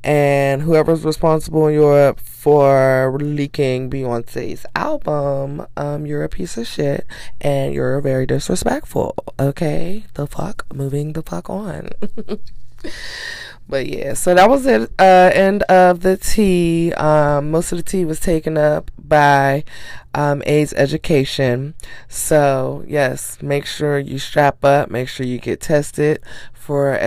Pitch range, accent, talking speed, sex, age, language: 135-165 Hz, American, 135 wpm, female, 20-39, English